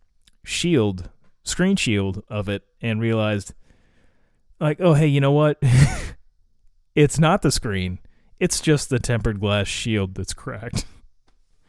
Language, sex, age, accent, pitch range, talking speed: English, male, 30-49, American, 95-130 Hz, 130 wpm